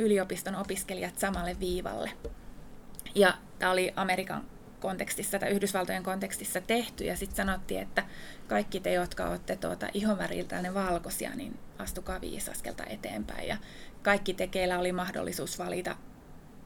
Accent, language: native, Finnish